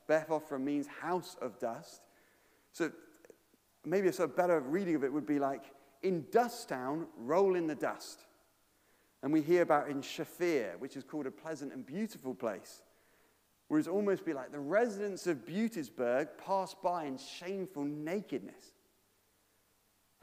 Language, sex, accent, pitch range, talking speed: English, male, British, 105-170 Hz, 160 wpm